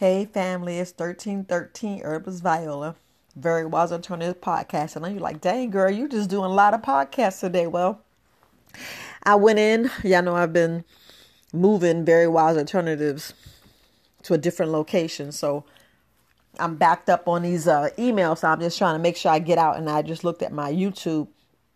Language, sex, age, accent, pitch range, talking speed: English, female, 30-49, American, 160-195 Hz, 185 wpm